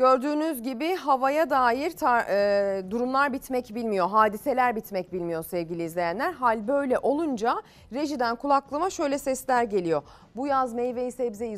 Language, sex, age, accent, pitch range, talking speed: Turkish, female, 30-49, native, 180-265 Hz, 135 wpm